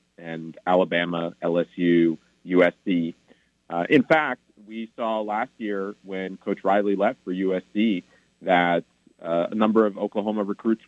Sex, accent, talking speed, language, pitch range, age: male, American, 130 wpm, English, 85-105 Hz, 40-59